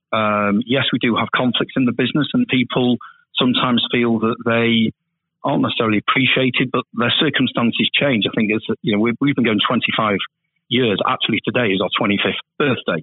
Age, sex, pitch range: 40-59, male, 105-125 Hz